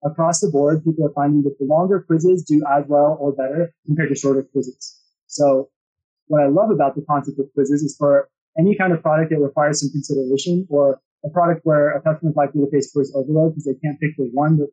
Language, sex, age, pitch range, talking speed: English, male, 20-39, 140-165 Hz, 230 wpm